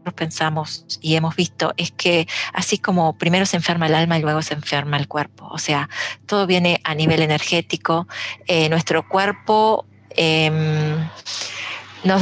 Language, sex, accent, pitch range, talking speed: Spanish, female, Argentinian, 150-175 Hz, 150 wpm